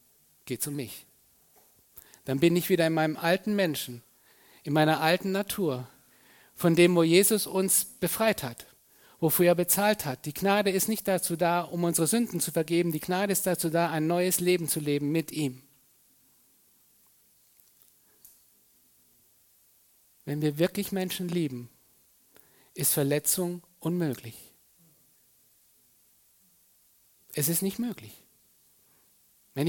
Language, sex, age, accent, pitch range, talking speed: German, male, 50-69, German, 135-180 Hz, 125 wpm